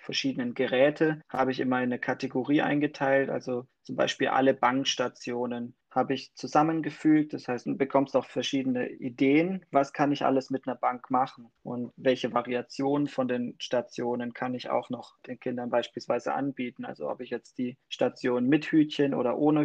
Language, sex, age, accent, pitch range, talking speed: German, male, 20-39, German, 125-140 Hz, 170 wpm